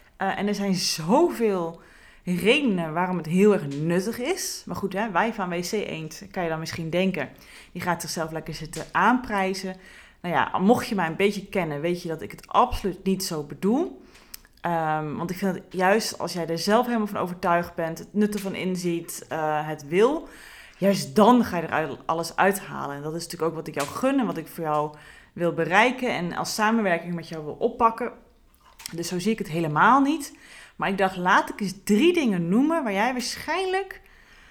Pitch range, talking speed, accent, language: 170-225 Hz, 205 wpm, Dutch, Dutch